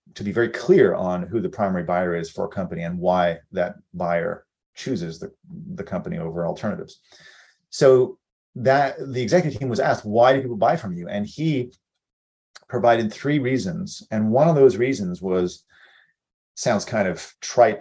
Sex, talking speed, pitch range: male, 170 wpm, 100-150 Hz